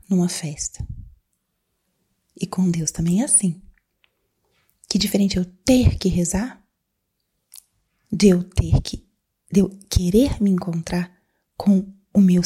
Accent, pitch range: Brazilian, 175-210 Hz